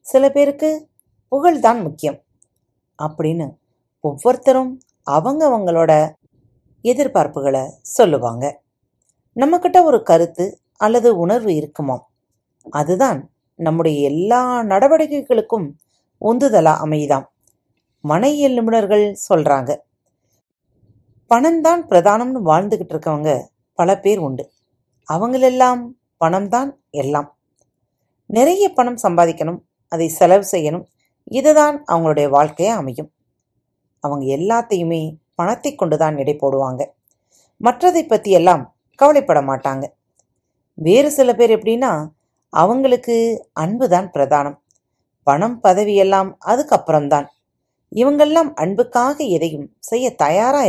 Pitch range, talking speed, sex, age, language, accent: 150-245 Hz, 85 wpm, female, 40-59, Tamil, native